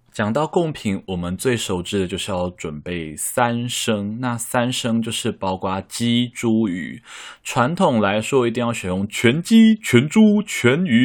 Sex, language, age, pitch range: male, Chinese, 20-39, 90-120 Hz